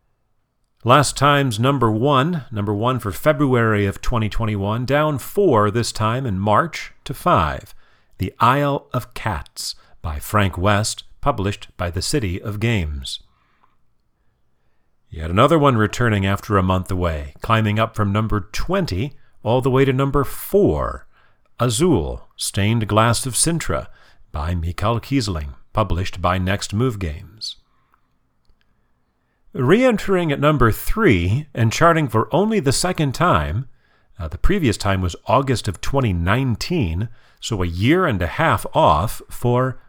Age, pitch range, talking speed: 40-59, 95-130 Hz, 135 wpm